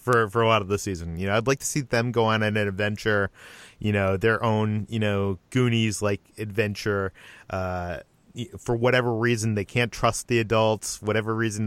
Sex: male